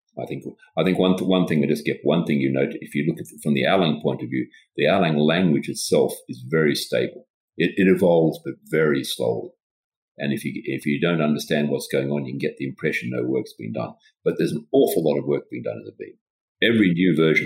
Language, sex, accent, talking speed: English, male, Australian, 250 wpm